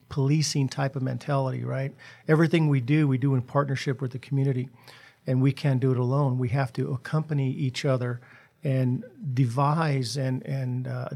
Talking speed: 170 wpm